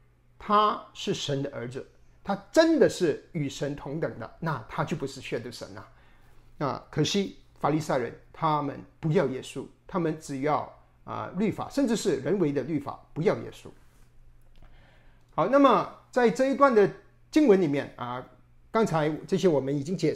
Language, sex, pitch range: Chinese, male, 135-200 Hz